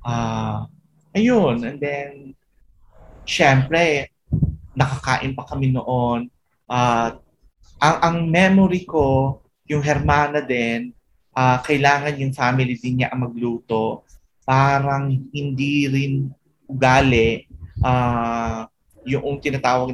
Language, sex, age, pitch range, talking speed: English, male, 30-49, 115-145 Hz, 100 wpm